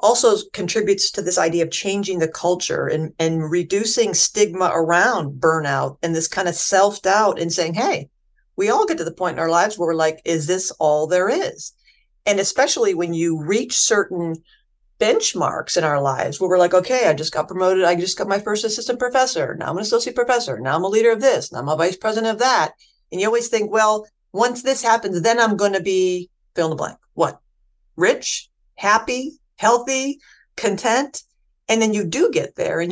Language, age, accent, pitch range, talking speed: English, 50-69, American, 165-220 Hz, 205 wpm